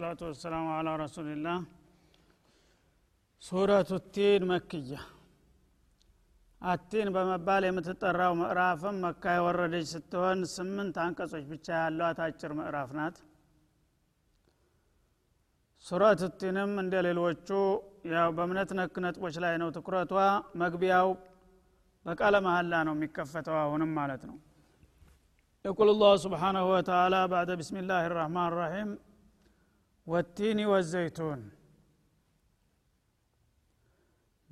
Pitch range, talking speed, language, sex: 155-185 Hz, 85 wpm, Amharic, male